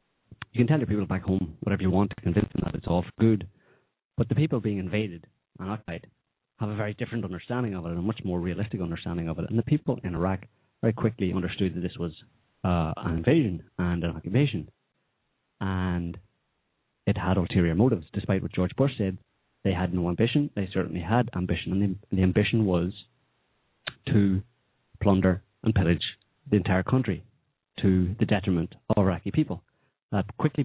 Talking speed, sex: 185 wpm, male